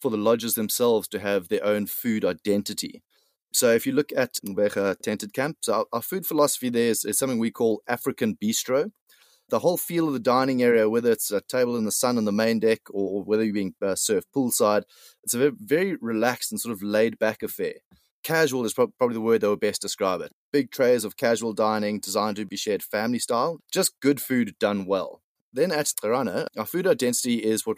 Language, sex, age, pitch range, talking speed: English, male, 30-49, 110-140 Hz, 215 wpm